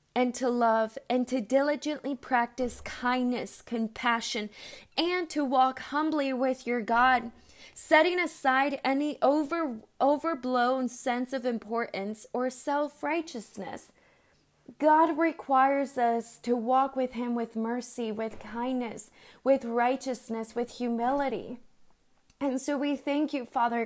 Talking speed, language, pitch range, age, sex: 115 wpm, English, 240-275 Hz, 20-39, female